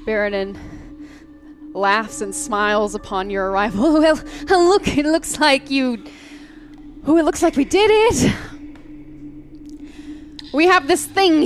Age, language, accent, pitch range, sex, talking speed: 20-39, English, American, 220-305 Hz, female, 125 wpm